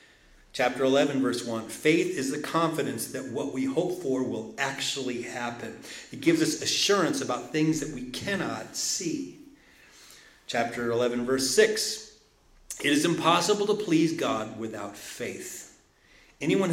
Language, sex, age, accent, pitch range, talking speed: English, male, 40-59, American, 110-145 Hz, 140 wpm